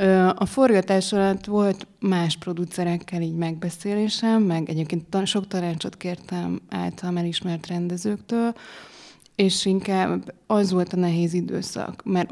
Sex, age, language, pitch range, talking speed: female, 20-39, English, 175-200 Hz, 115 wpm